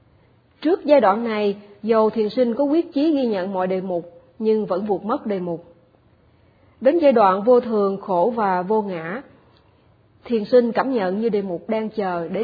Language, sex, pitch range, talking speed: Vietnamese, female, 185-245 Hz, 195 wpm